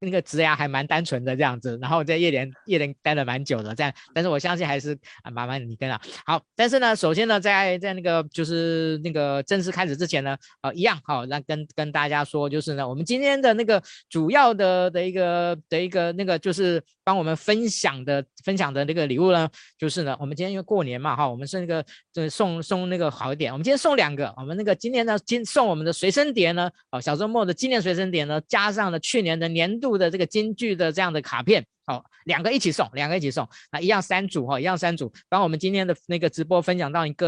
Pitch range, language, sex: 140-180 Hz, Chinese, male